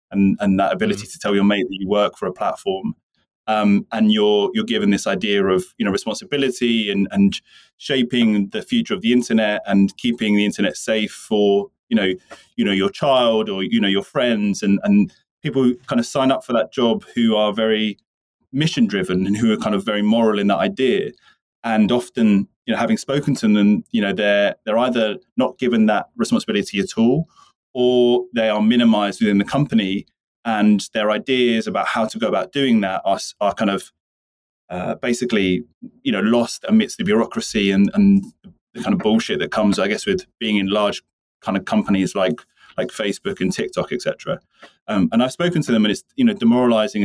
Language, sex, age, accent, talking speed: English, male, 20-39, British, 200 wpm